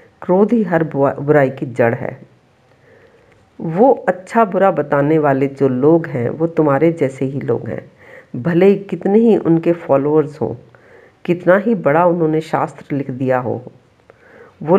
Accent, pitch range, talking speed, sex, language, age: native, 140-185 Hz, 150 wpm, female, Hindi, 50-69